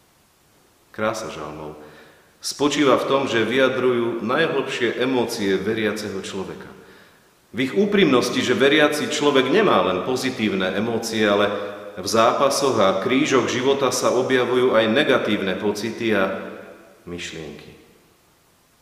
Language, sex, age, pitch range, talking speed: Slovak, male, 40-59, 105-135 Hz, 110 wpm